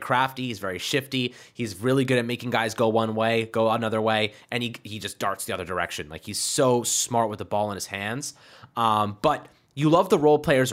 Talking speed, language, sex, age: 230 wpm, English, male, 20-39